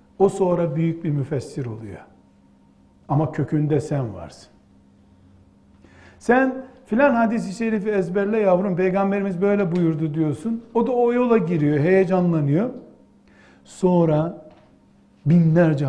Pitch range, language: 140-225 Hz, Turkish